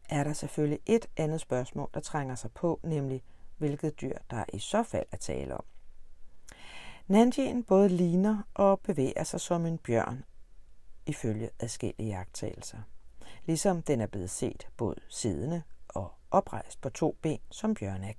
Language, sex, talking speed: Danish, female, 160 wpm